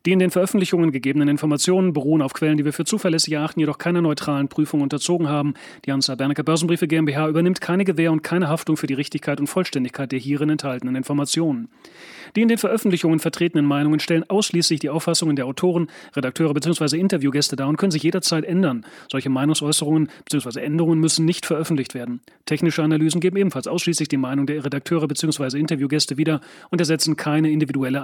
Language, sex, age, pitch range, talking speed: German, male, 30-49, 145-170 Hz, 180 wpm